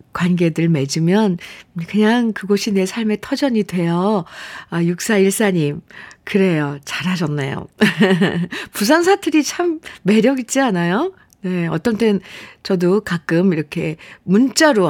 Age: 50-69